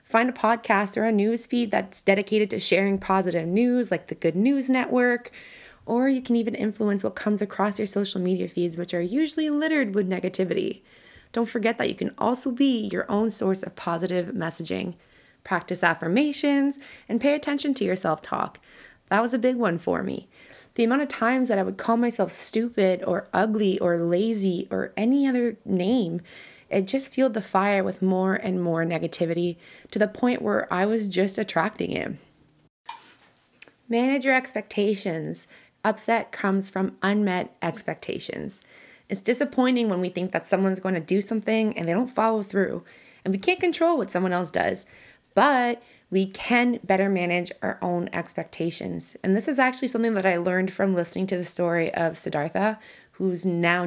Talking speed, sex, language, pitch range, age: 175 wpm, female, English, 185-240 Hz, 20-39